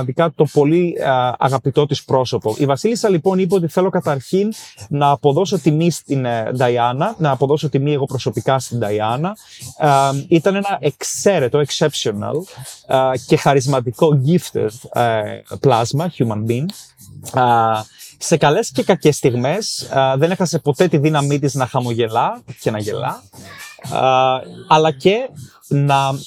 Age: 30-49